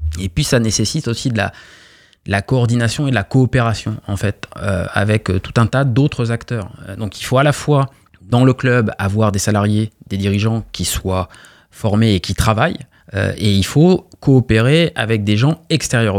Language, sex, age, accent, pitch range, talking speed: French, male, 20-39, French, 95-125 Hz, 195 wpm